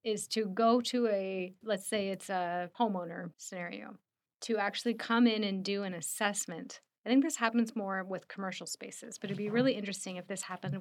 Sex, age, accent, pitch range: female, 30-49, American, 185-215 Hz